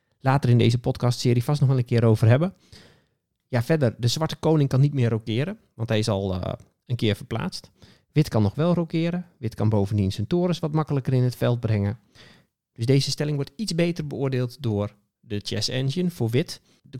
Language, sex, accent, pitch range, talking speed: Dutch, male, Dutch, 110-145 Hz, 205 wpm